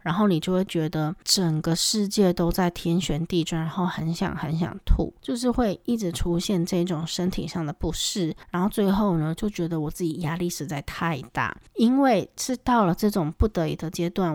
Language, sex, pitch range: Chinese, female, 165-200 Hz